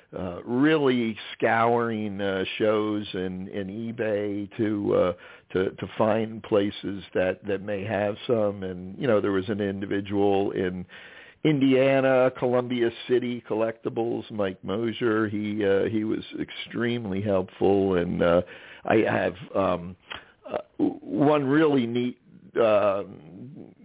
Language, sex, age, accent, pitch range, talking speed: English, male, 50-69, American, 95-120 Hz, 125 wpm